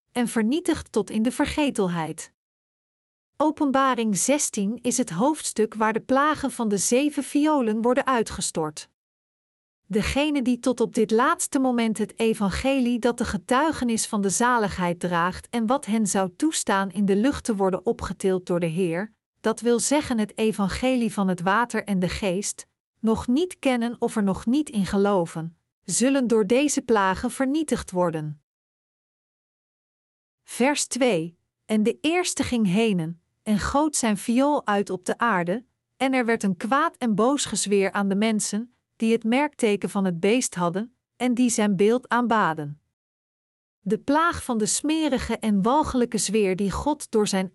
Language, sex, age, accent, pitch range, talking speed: Dutch, female, 40-59, Dutch, 200-255 Hz, 160 wpm